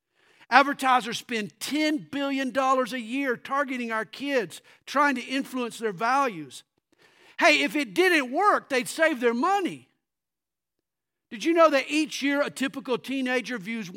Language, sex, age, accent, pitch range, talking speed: English, male, 50-69, American, 210-270 Hz, 140 wpm